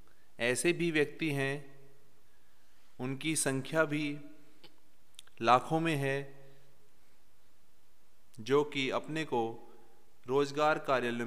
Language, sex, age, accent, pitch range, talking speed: Hindi, male, 30-49, native, 120-150 Hz, 85 wpm